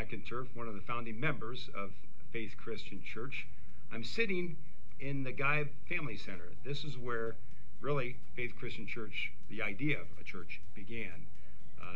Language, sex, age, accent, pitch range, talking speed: English, male, 50-69, American, 105-130 Hz, 150 wpm